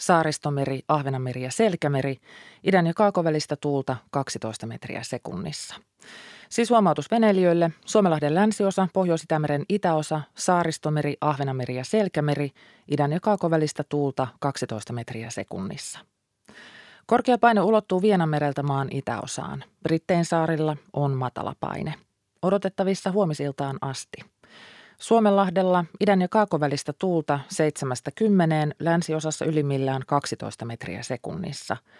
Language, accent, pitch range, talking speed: Finnish, native, 135-180 Hz, 100 wpm